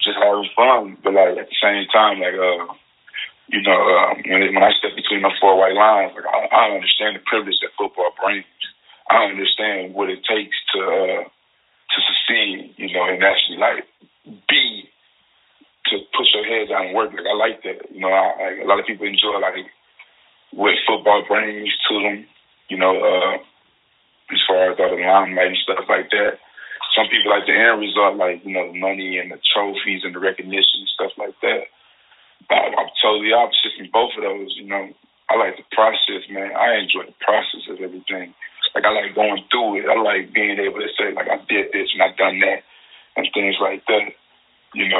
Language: English